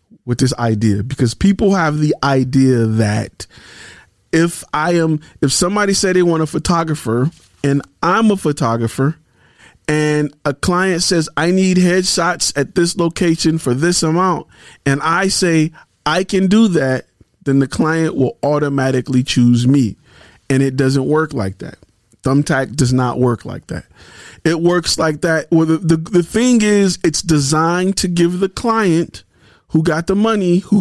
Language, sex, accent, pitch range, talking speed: English, male, American, 135-180 Hz, 160 wpm